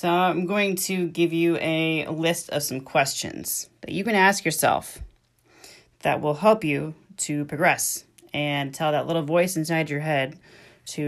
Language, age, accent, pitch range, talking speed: English, 30-49, American, 135-165 Hz, 170 wpm